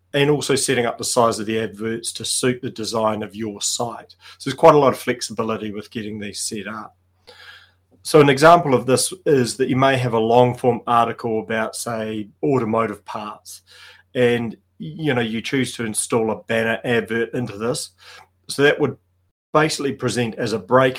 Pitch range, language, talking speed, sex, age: 105-125 Hz, English, 185 wpm, male, 30-49